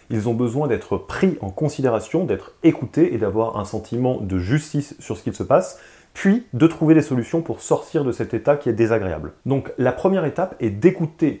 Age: 30-49